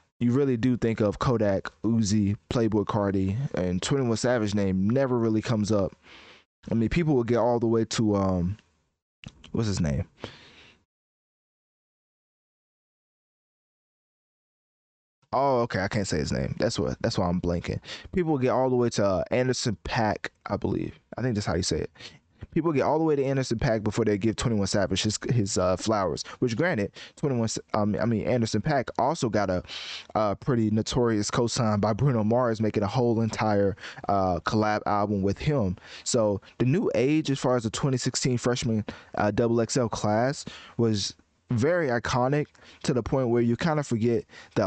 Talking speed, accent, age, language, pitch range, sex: 180 wpm, American, 20-39, English, 105-125 Hz, male